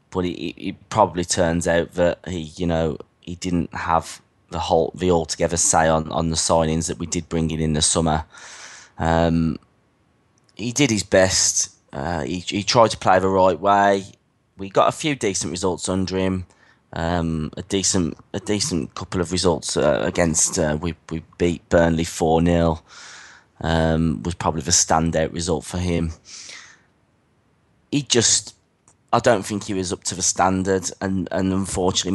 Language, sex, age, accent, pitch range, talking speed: English, male, 20-39, British, 85-95 Hz, 170 wpm